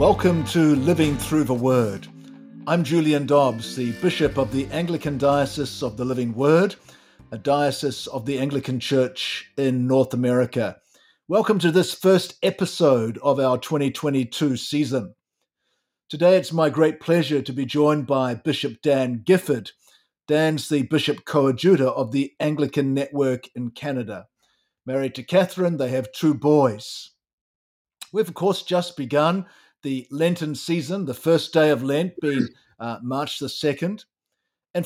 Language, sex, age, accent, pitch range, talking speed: English, male, 50-69, Australian, 130-165 Hz, 145 wpm